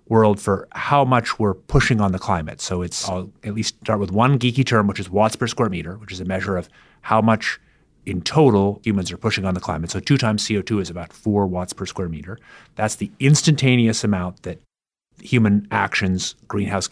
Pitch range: 90-110 Hz